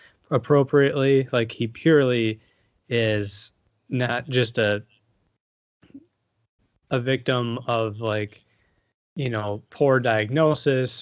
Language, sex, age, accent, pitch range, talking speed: English, male, 20-39, American, 110-130 Hz, 85 wpm